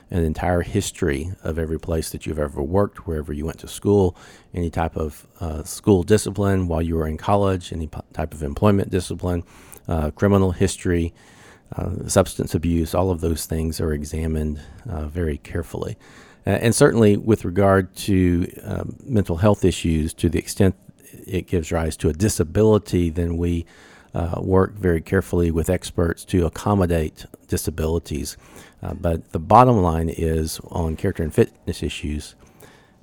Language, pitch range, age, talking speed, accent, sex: English, 80-100 Hz, 50-69, 160 wpm, American, male